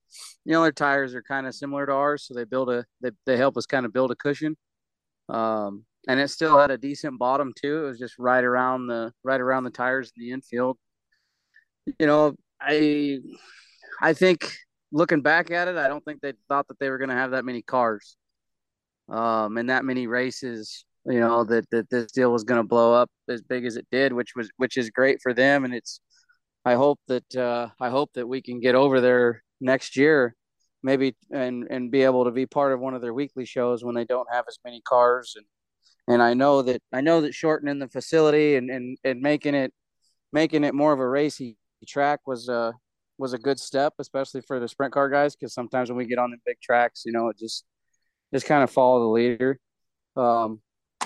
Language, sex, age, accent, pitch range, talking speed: English, male, 20-39, American, 120-145 Hz, 220 wpm